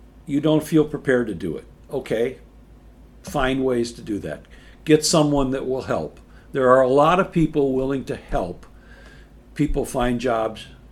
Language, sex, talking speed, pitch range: English, male, 165 wpm, 120-155 Hz